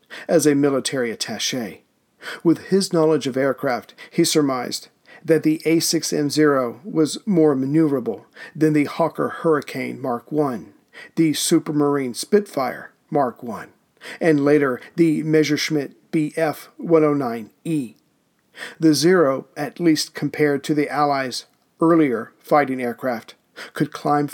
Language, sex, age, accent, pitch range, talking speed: English, male, 50-69, American, 135-160 Hz, 115 wpm